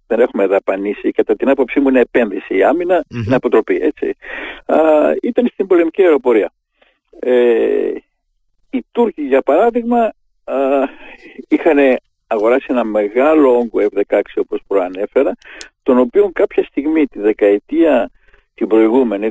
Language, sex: Greek, male